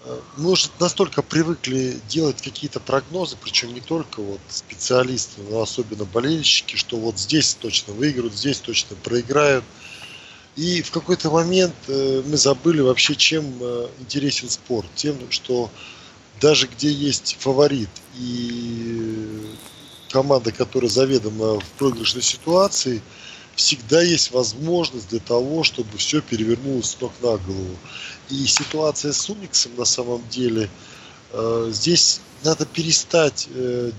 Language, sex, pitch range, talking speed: Russian, male, 115-150 Hz, 120 wpm